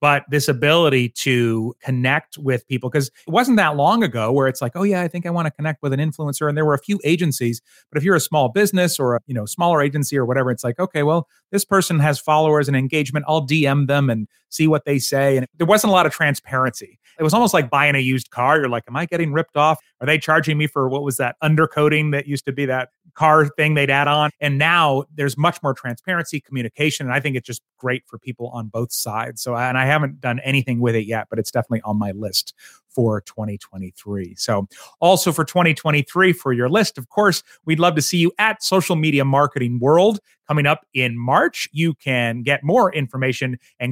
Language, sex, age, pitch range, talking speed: English, male, 30-49, 125-160 Hz, 230 wpm